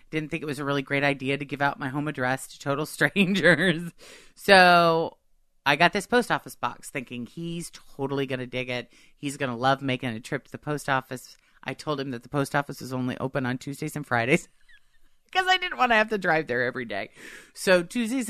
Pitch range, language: 125-160 Hz, English